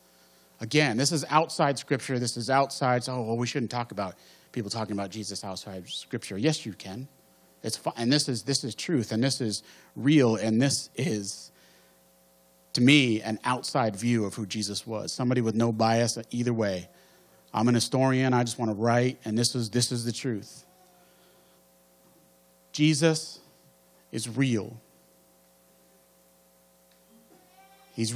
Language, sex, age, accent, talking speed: English, male, 40-59, American, 155 wpm